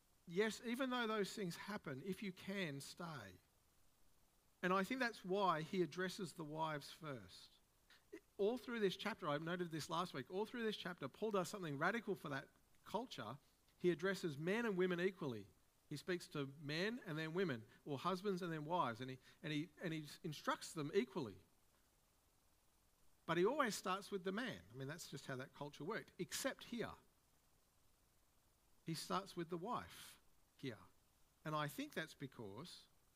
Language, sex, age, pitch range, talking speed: English, male, 50-69, 140-200 Hz, 165 wpm